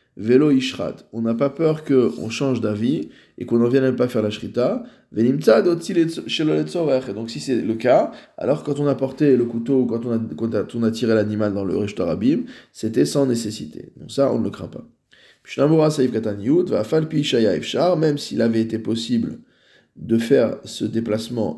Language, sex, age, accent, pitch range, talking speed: French, male, 20-39, French, 115-150 Hz, 160 wpm